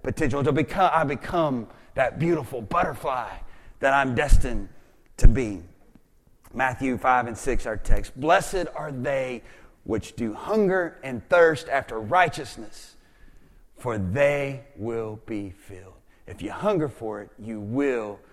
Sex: male